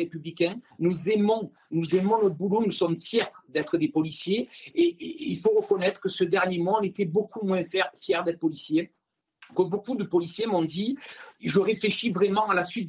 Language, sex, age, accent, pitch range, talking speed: French, male, 50-69, French, 170-205 Hz, 190 wpm